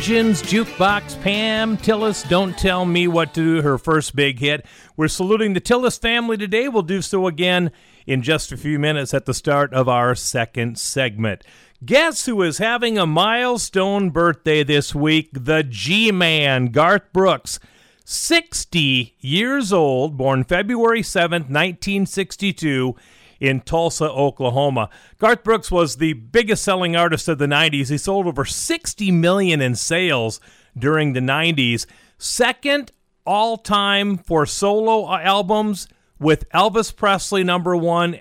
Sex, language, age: male, English, 50-69